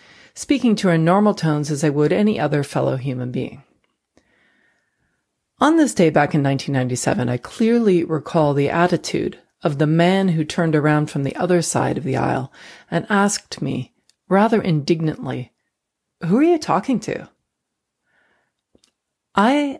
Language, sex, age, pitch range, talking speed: English, female, 40-59, 150-195 Hz, 150 wpm